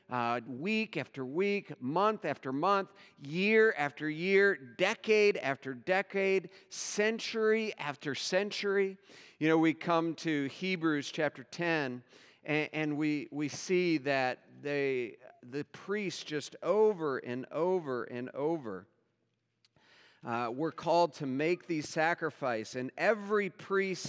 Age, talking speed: 50-69, 120 wpm